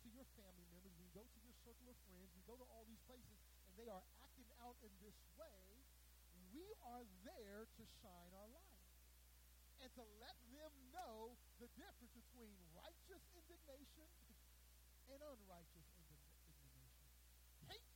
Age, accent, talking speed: 50-69, American, 150 wpm